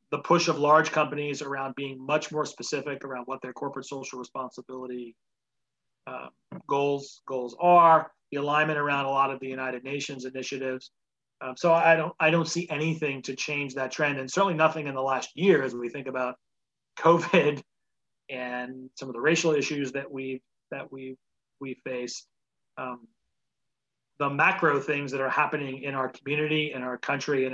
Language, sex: English, male